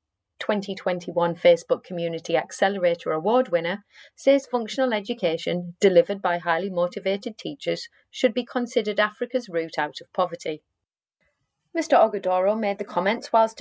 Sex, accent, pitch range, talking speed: female, British, 170-235 Hz, 125 wpm